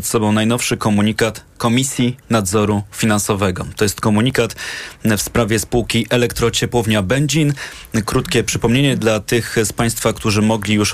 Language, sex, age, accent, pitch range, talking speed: Polish, male, 20-39, native, 105-120 Hz, 130 wpm